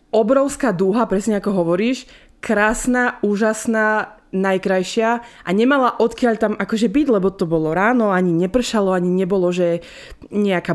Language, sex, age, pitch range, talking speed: Slovak, female, 20-39, 175-215 Hz, 135 wpm